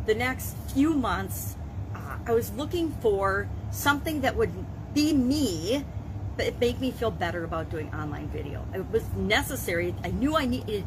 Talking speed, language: 165 wpm, English